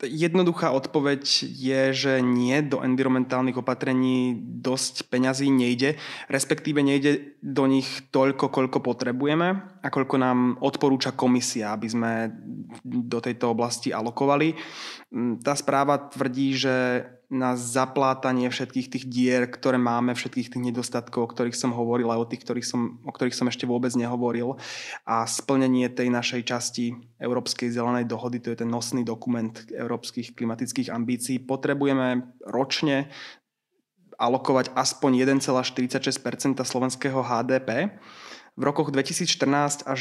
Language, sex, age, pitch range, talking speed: Slovak, male, 20-39, 120-135 Hz, 125 wpm